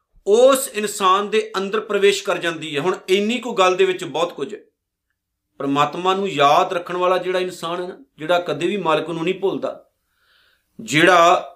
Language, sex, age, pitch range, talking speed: Punjabi, male, 50-69, 165-200 Hz, 165 wpm